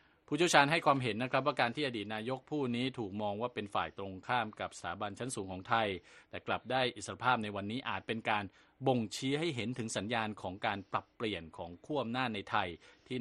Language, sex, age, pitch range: Thai, male, 20-39, 105-130 Hz